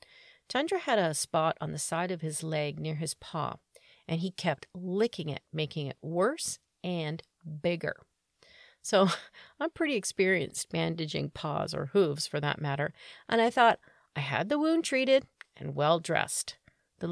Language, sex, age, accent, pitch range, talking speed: English, female, 40-59, American, 155-240 Hz, 160 wpm